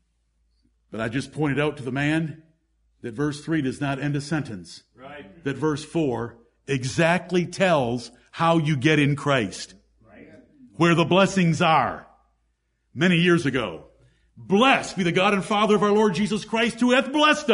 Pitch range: 180-270 Hz